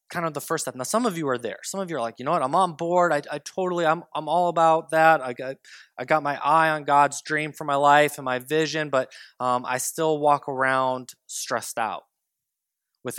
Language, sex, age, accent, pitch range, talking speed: English, male, 20-39, American, 130-175 Hz, 245 wpm